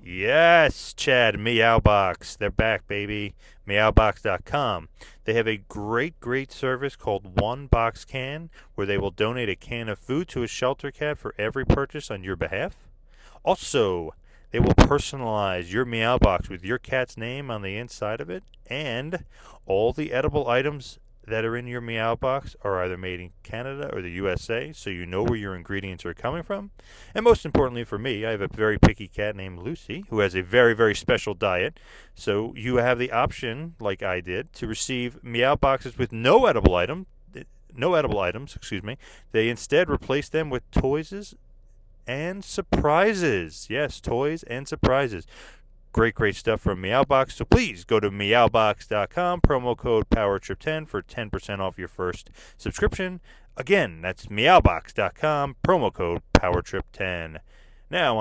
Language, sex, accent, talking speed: English, male, American, 165 wpm